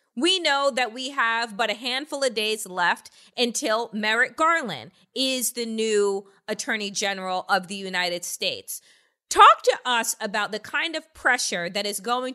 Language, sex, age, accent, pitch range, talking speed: English, female, 30-49, American, 215-315 Hz, 165 wpm